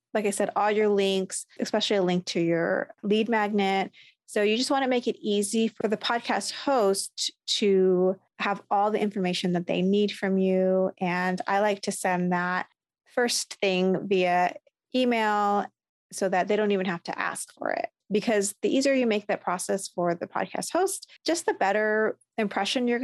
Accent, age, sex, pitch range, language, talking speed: American, 30-49, female, 185-230 Hz, English, 185 wpm